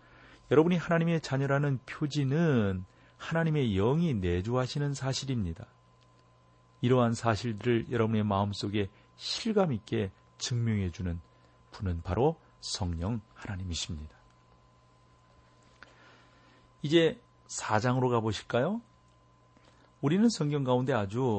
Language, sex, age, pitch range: Korean, male, 40-59, 95-125 Hz